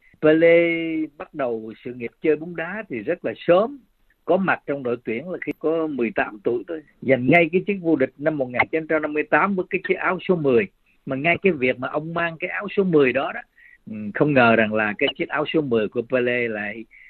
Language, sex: Vietnamese, male